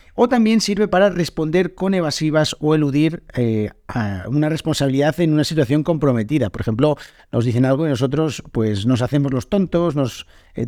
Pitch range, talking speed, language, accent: 130-165 Hz, 175 wpm, Spanish, Spanish